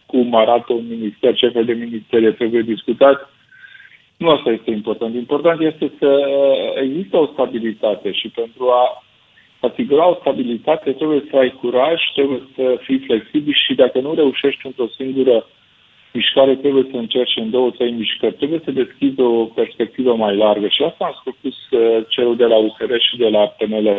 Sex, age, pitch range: male, 50-69, 115-155 Hz